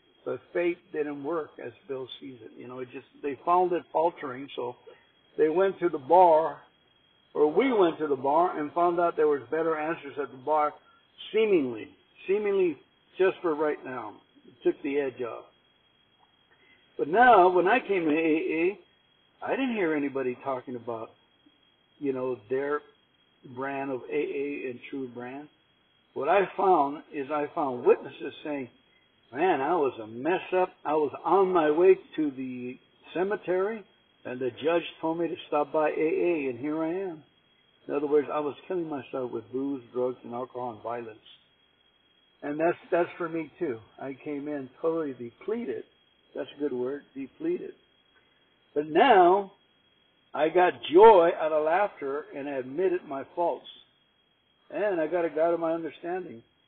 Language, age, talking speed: English, 60-79, 165 wpm